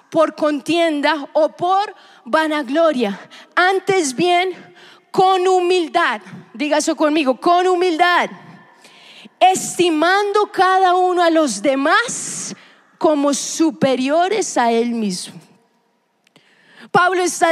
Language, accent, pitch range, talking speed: Spanish, Colombian, 265-340 Hz, 95 wpm